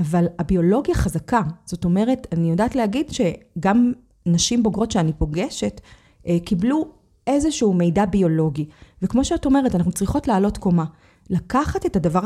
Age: 30-49